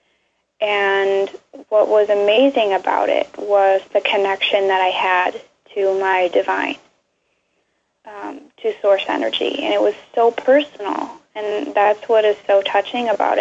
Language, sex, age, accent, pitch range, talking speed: English, female, 10-29, American, 195-215 Hz, 140 wpm